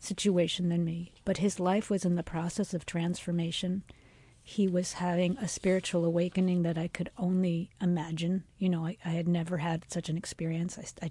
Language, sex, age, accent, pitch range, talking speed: English, female, 50-69, American, 175-205 Hz, 190 wpm